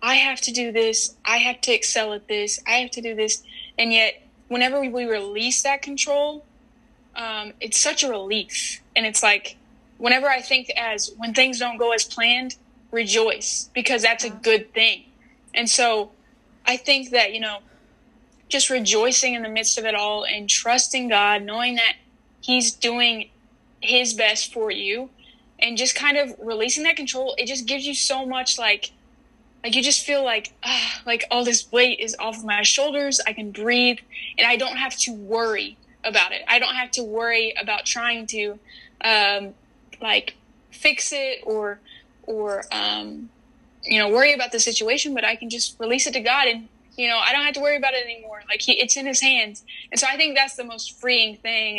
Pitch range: 220-255 Hz